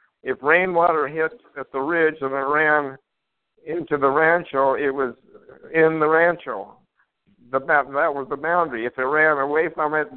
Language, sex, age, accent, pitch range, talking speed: English, male, 60-79, American, 130-155 Hz, 160 wpm